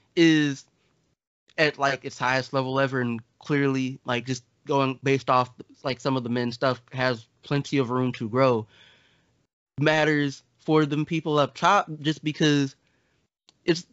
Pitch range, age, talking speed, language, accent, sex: 125-155 Hz, 20-39, 150 wpm, English, American, male